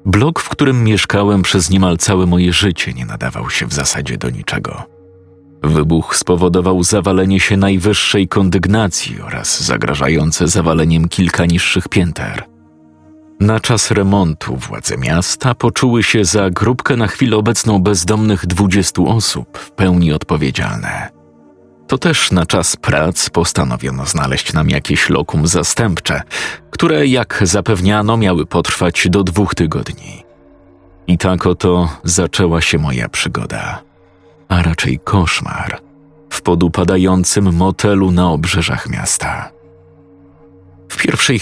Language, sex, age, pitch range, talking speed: Polish, male, 40-59, 90-105 Hz, 120 wpm